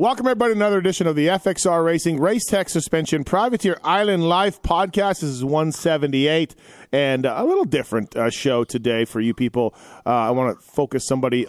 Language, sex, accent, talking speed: English, male, American, 185 wpm